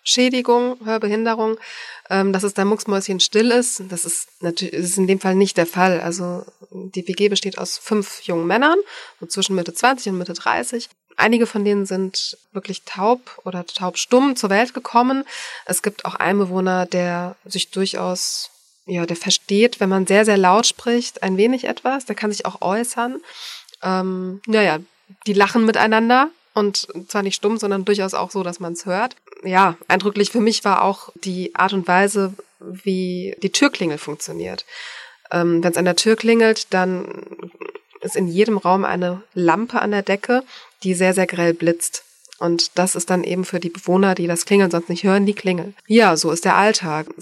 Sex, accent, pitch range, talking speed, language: female, German, 180-215 Hz, 180 wpm, German